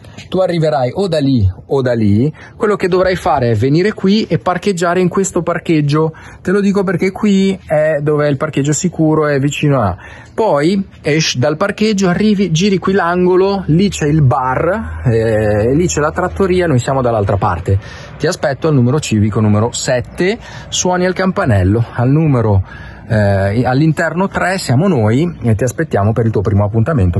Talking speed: 175 wpm